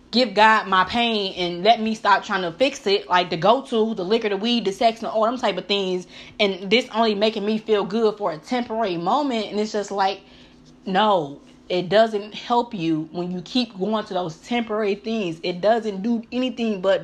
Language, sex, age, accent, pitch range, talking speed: English, female, 20-39, American, 195-240 Hz, 210 wpm